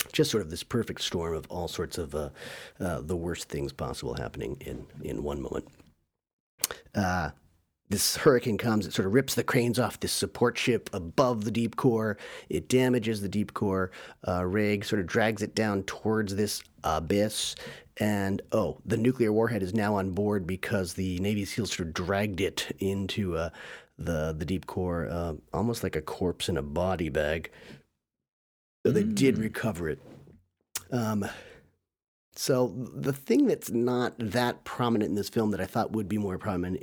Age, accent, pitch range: 40-59, American, 90-110 Hz